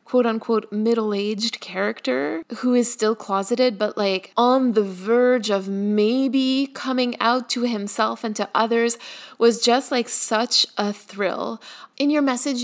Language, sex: English, female